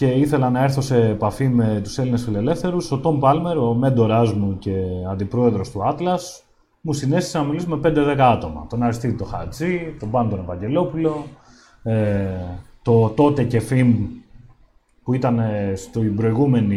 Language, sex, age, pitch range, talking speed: Greek, male, 30-49, 115-155 Hz, 150 wpm